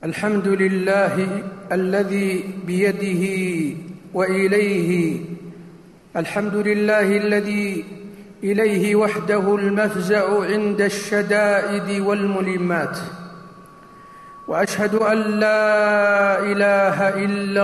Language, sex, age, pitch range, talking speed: Arabic, male, 50-69, 195-215 Hz, 65 wpm